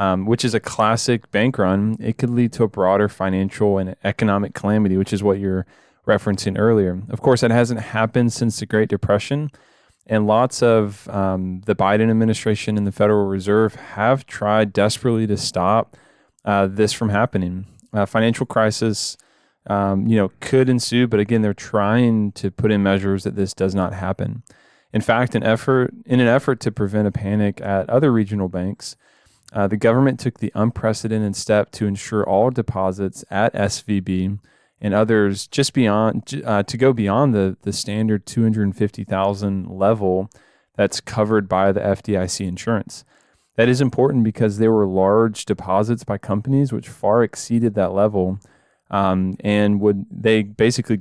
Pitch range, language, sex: 100-115 Hz, English, male